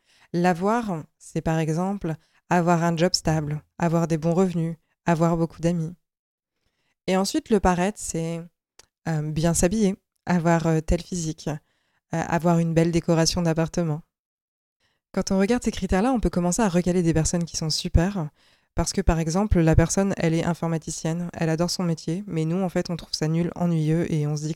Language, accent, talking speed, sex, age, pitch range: French, French, 175 wpm, female, 20-39, 160-180 Hz